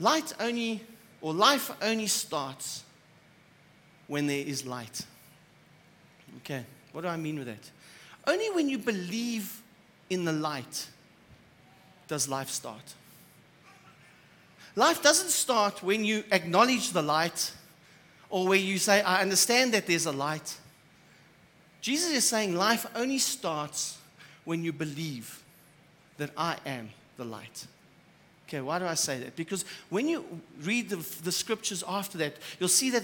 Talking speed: 140 wpm